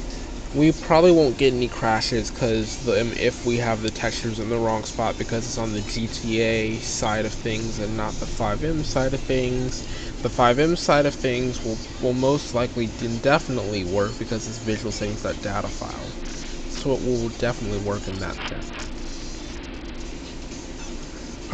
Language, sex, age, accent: English, male, 20-39, American